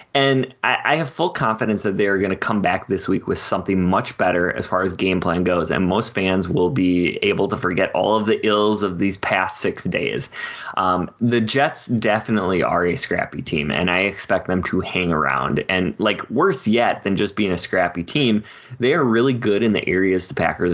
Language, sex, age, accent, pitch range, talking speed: English, male, 20-39, American, 95-120 Hz, 215 wpm